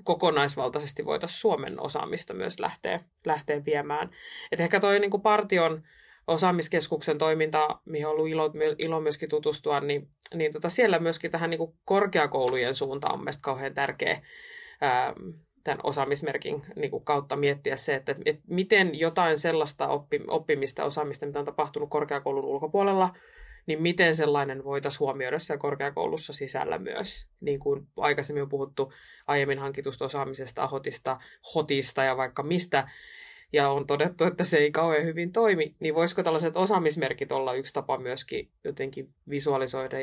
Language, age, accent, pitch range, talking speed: Finnish, 20-39, native, 145-185 Hz, 130 wpm